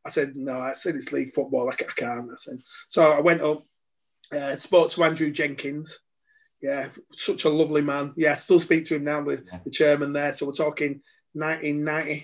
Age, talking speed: 20-39, 205 wpm